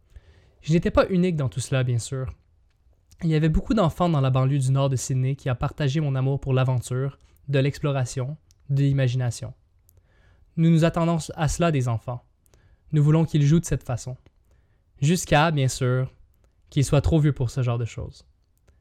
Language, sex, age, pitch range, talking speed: French, male, 20-39, 105-150 Hz, 185 wpm